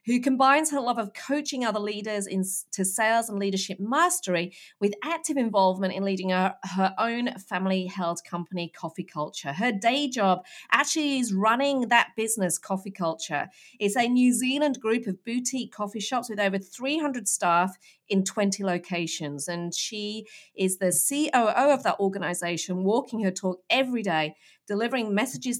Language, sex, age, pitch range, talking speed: English, female, 40-59, 185-245 Hz, 155 wpm